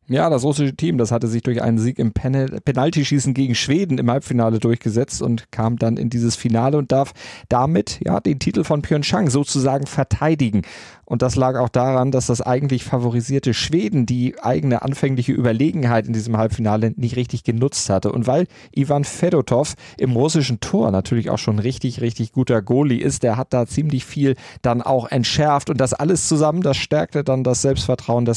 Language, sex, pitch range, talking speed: German, male, 115-135 Hz, 185 wpm